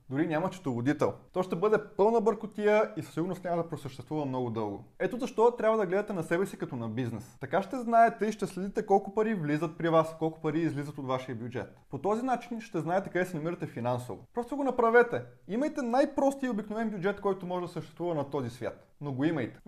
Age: 20-39